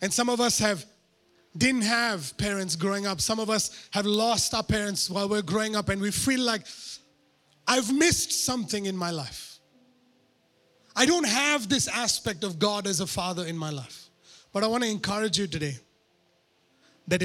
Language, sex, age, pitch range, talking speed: English, male, 30-49, 150-235 Hz, 180 wpm